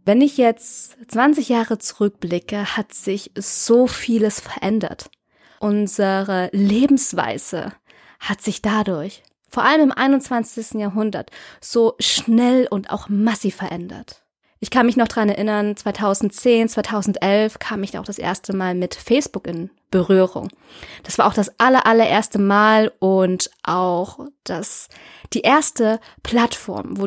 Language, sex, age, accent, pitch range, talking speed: German, female, 20-39, German, 200-235 Hz, 130 wpm